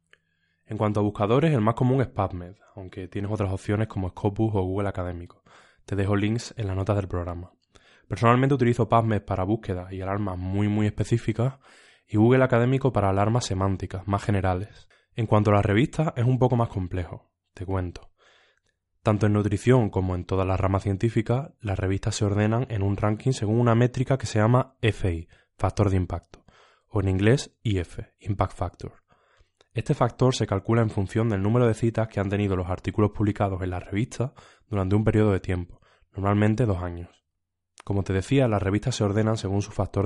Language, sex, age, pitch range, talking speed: Spanish, male, 20-39, 95-115 Hz, 185 wpm